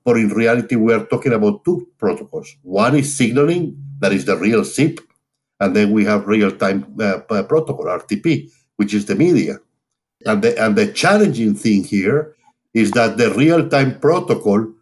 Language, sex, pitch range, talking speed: English, male, 110-150 Hz, 165 wpm